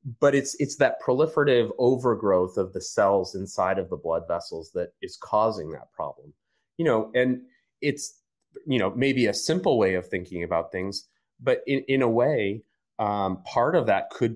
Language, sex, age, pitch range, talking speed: English, male, 30-49, 95-120 Hz, 180 wpm